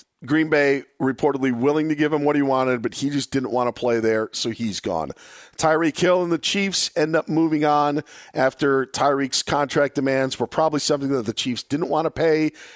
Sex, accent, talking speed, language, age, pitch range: male, American, 205 wpm, English, 40-59, 125-170 Hz